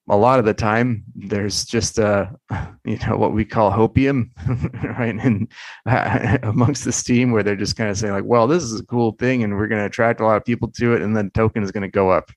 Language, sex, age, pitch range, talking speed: English, male, 30-49, 100-115 Hz, 250 wpm